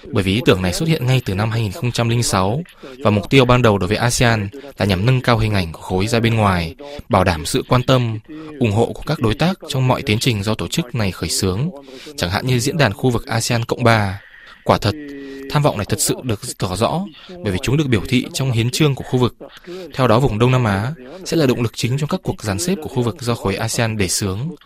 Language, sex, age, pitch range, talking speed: Vietnamese, male, 20-39, 110-140 Hz, 260 wpm